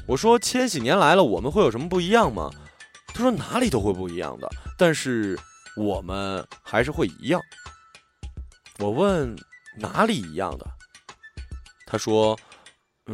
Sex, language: male, Chinese